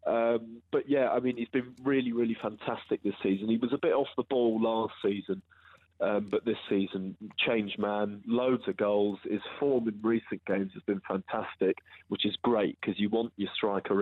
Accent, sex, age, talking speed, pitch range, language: British, male, 30-49, 195 wpm, 95-125 Hz, English